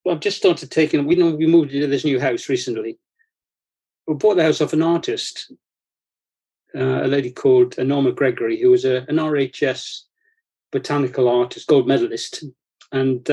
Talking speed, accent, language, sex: 160 wpm, British, English, male